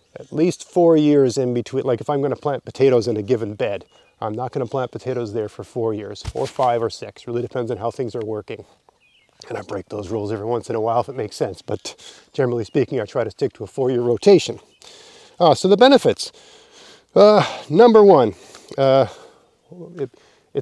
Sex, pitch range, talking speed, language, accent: male, 115-165 Hz, 210 wpm, English, American